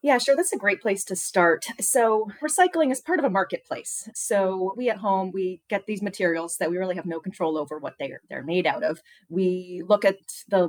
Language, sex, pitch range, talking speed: English, female, 160-200 Hz, 225 wpm